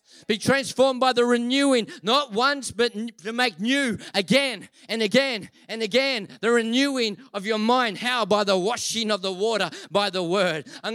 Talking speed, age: 175 wpm, 40-59